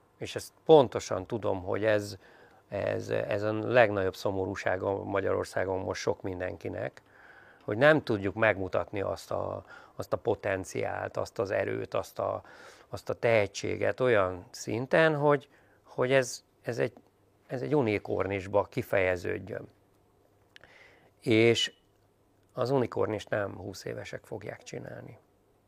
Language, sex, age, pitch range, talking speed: Hungarian, male, 50-69, 100-120 Hz, 120 wpm